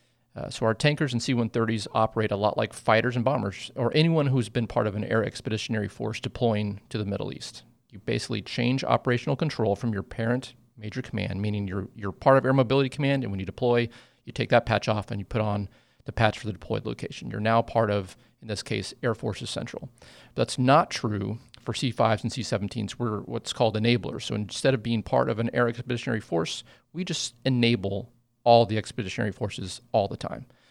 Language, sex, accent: English, male, American